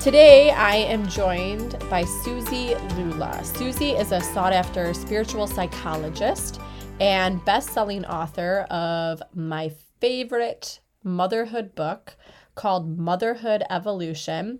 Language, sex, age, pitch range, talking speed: English, female, 30-49, 165-210 Hz, 100 wpm